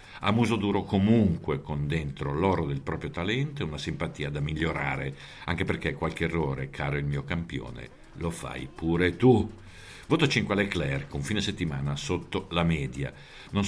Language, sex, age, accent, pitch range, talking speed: Italian, male, 50-69, native, 75-100 Hz, 160 wpm